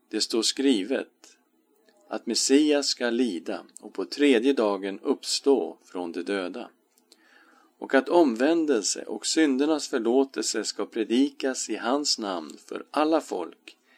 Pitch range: 100-140 Hz